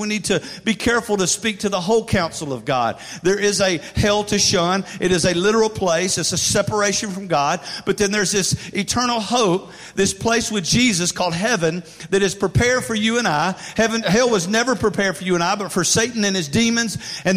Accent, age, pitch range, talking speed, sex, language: American, 50-69, 135-200 Hz, 220 wpm, male, English